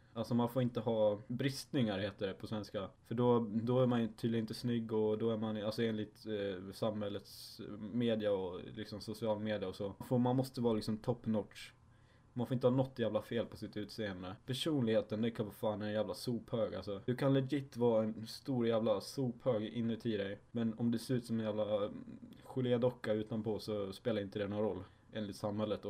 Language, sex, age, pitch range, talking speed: Swedish, male, 10-29, 105-120 Hz, 200 wpm